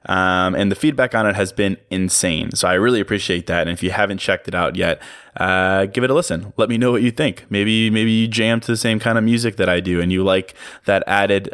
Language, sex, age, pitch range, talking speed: English, male, 20-39, 95-110 Hz, 265 wpm